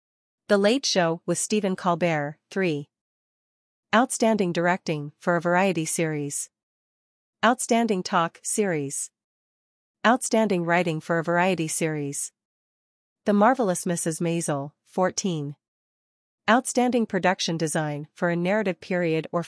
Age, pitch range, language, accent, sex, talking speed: 40-59, 160-205 Hz, English, American, female, 110 wpm